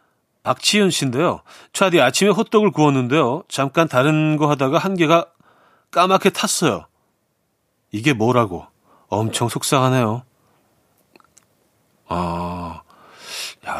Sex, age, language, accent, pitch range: male, 40-59, Korean, native, 125-170 Hz